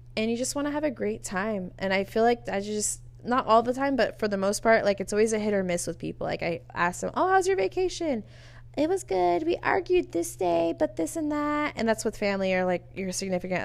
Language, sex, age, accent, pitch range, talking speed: English, female, 20-39, American, 170-210 Hz, 265 wpm